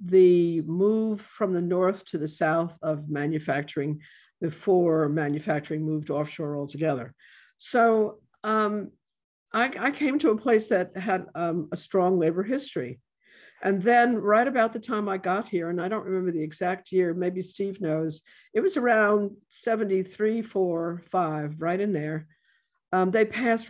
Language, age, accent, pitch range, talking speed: English, 60-79, American, 155-205 Hz, 155 wpm